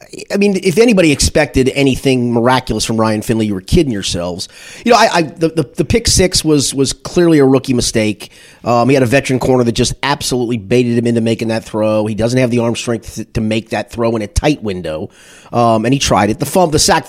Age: 30-49